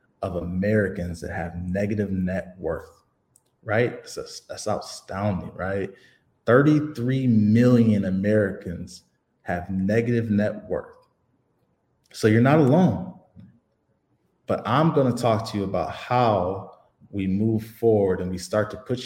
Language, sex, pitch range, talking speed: English, male, 95-125 Hz, 125 wpm